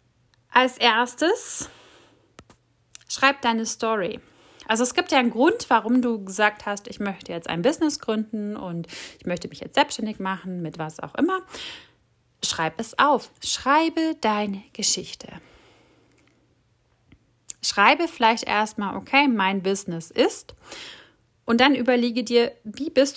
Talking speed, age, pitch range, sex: 130 wpm, 30-49, 185-250 Hz, female